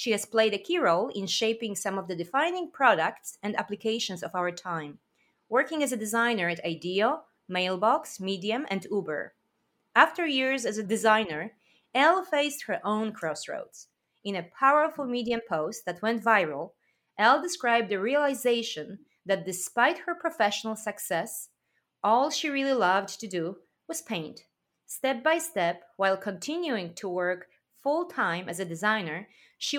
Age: 30-49